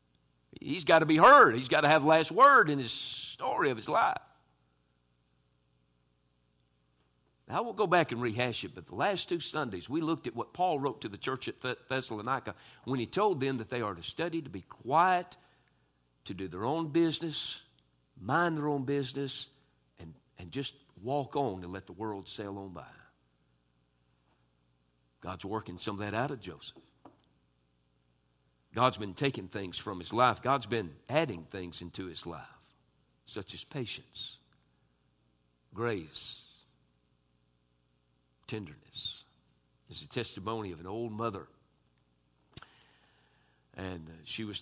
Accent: American